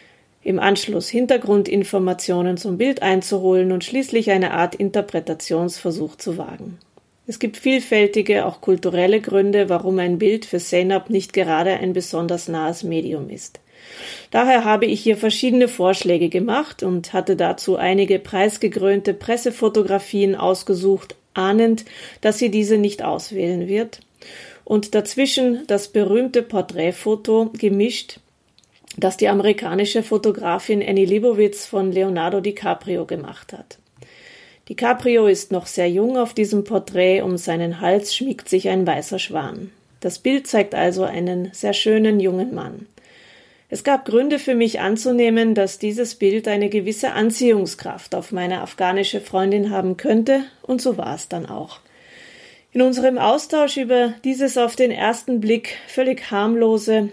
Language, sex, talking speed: German, female, 135 wpm